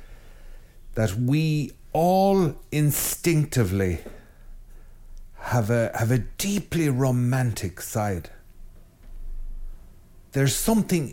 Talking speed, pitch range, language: 70 wpm, 100-140 Hz, English